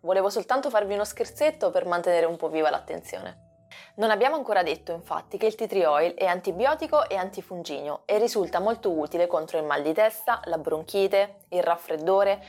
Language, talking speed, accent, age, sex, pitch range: Italian, 180 wpm, native, 20-39, female, 175-240 Hz